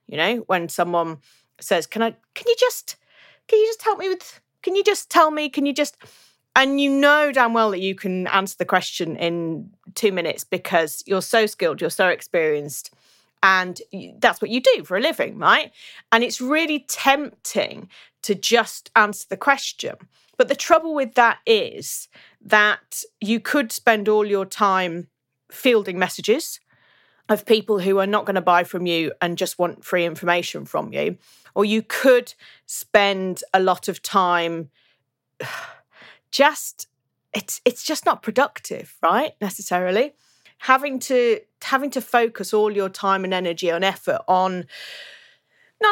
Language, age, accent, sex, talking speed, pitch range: English, 30-49, British, female, 165 wpm, 185-280 Hz